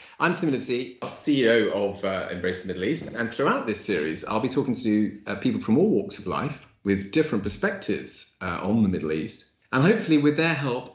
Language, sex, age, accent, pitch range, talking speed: English, male, 40-59, British, 100-125 Hz, 205 wpm